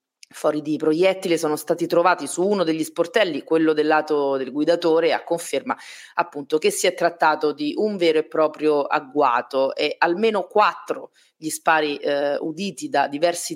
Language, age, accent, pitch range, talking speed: Italian, 30-49, native, 150-180 Hz, 165 wpm